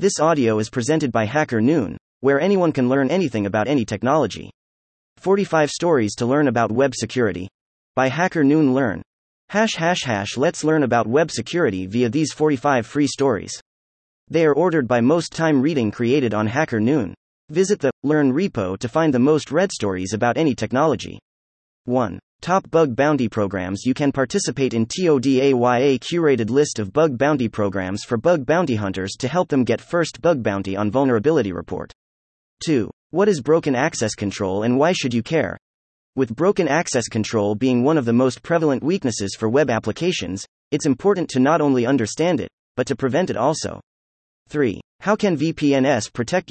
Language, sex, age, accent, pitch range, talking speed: English, male, 30-49, American, 110-155 Hz, 170 wpm